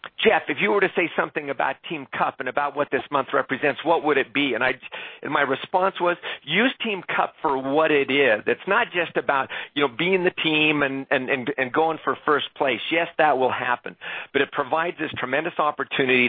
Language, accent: English, American